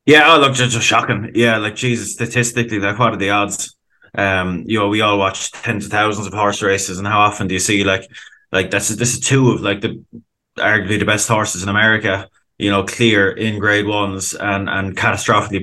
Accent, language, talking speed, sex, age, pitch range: Irish, English, 220 wpm, male, 20-39, 95-105 Hz